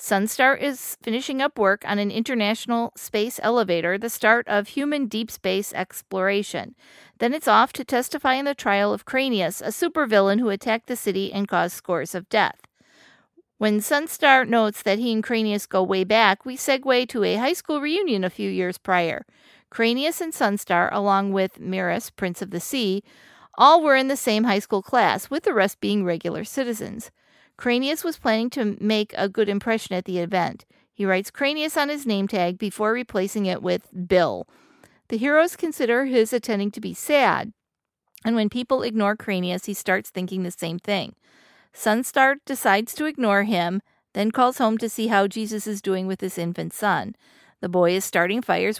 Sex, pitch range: female, 195-245 Hz